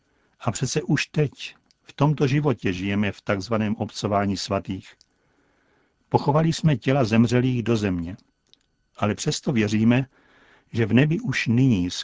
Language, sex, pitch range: Czech, male, 105-135 Hz